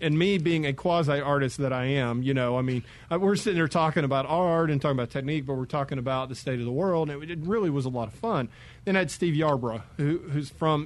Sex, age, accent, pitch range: male, 40-59, American, 130-160 Hz